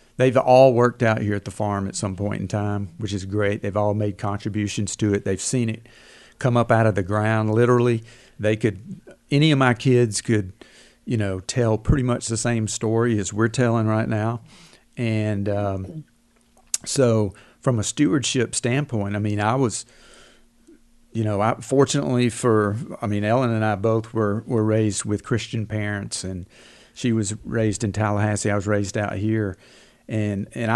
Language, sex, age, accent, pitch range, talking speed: English, male, 50-69, American, 105-125 Hz, 175 wpm